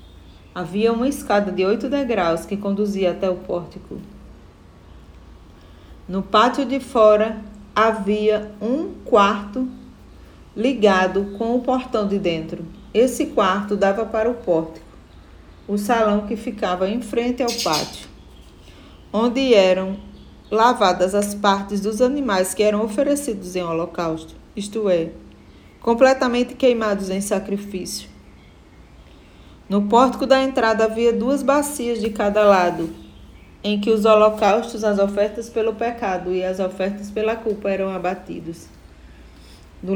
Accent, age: Brazilian, 40-59